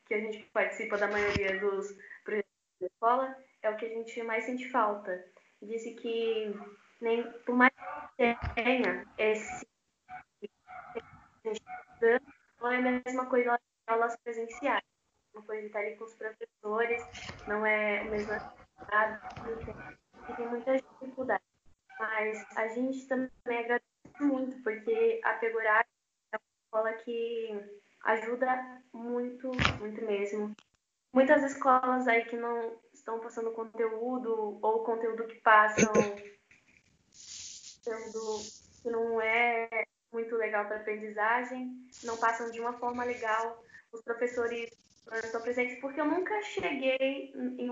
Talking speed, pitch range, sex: 125 wpm, 215-250 Hz, female